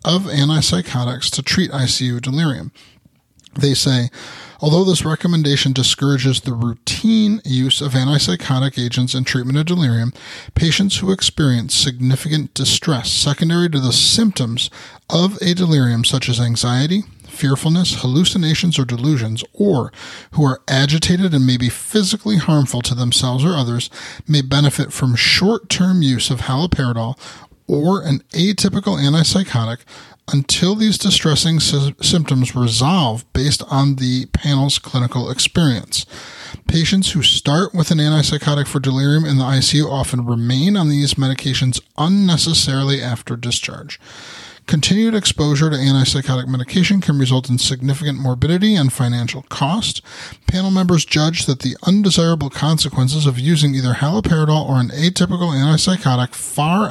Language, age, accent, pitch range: English, 30-49, American, 130-165 Hz